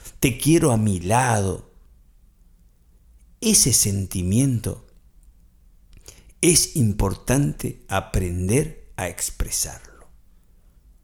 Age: 50-69